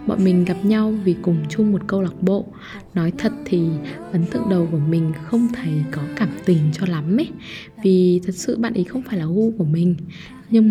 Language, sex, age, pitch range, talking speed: Vietnamese, female, 10-29, 170-225 Hz, 220 wpm